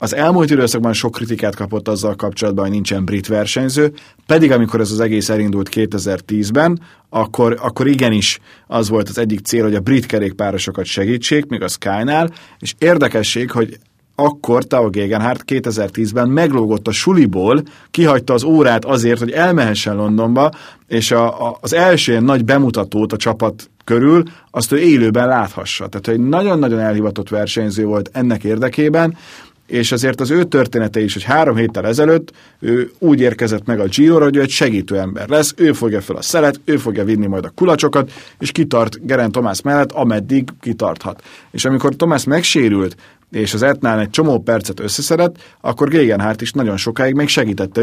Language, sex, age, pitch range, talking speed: Hungarian, male, 30-49, 110-140 Hz, 165 wpm